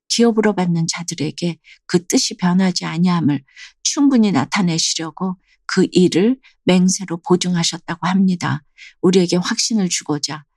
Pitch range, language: 170-220 Hz, Korean